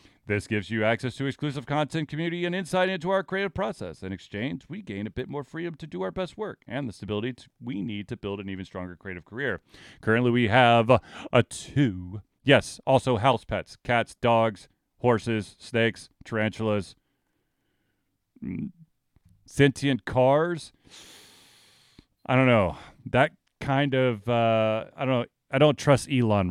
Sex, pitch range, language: male, 110-140 Hz, English